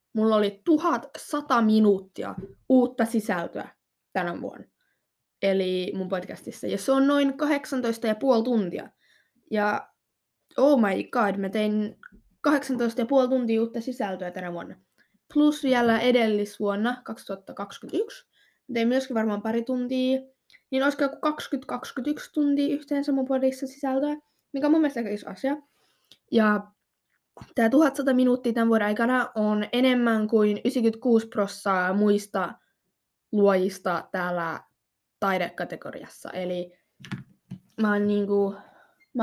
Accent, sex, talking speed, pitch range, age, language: native, female, 115 wpm, 205-270 Hz, 20-39, Finnish